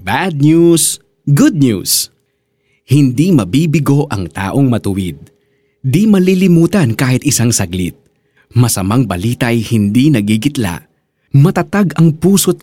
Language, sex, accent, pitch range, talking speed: Filipino, male, native, 110-155 Hz, 100 wpm